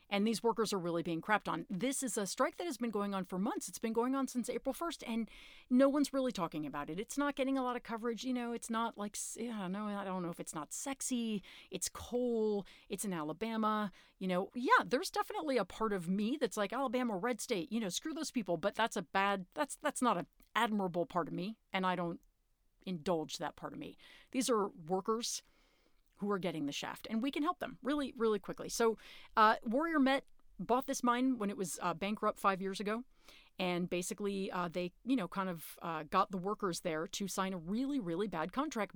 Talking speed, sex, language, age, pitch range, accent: 230 wpm, female, English, 40-59, 185-255 Hz, American